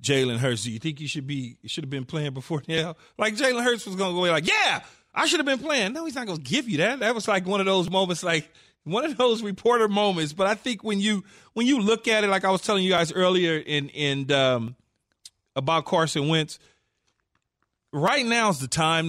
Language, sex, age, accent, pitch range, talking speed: English, male, 40-59, American, 160-215 Hz, 240 wpm